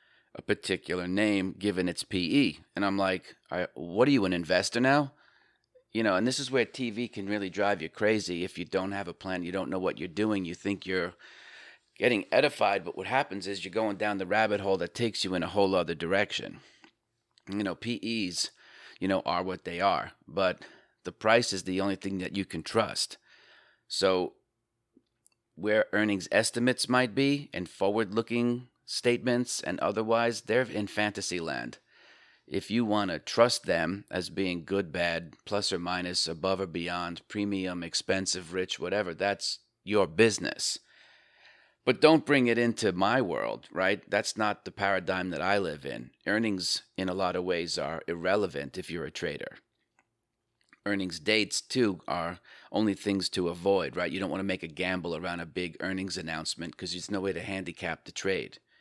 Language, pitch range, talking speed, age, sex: English, 90-110 Hz, 180 wpm, 30-49, male